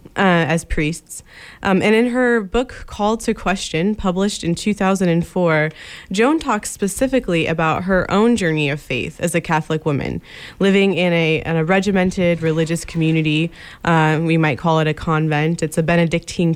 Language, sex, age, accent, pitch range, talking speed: English, female, 20-39, American, 160-195 Hz, 175 wpm